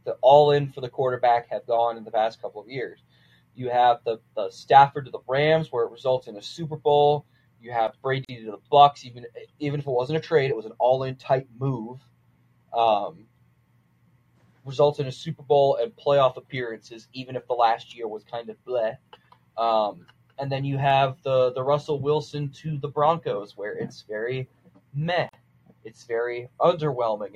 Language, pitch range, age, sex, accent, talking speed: English, 120-145 Hz, 20-39, male, American, 185 wpm